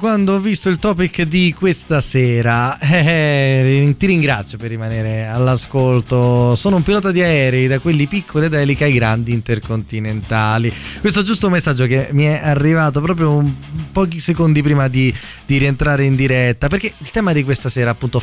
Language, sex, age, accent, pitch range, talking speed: Italian, male, 20-39, native, 120-165 Hz, 170 wpm